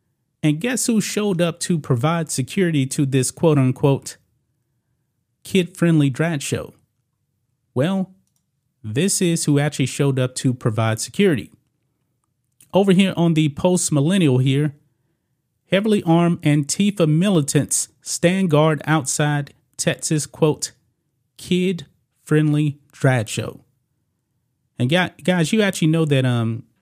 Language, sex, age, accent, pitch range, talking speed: English, male, 30-49, American, 125-170 Hz, 110 wpm